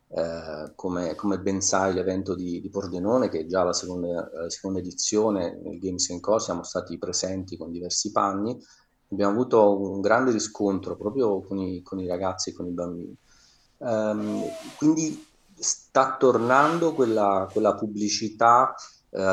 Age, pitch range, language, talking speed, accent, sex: 30-49, 95-115 Hz, Italian, 155 wpm, native, male